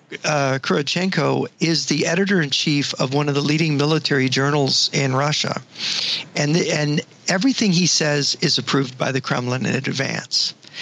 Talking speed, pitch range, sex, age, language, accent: 150 wpm, 140-165 Hz, male, 50-69, English, American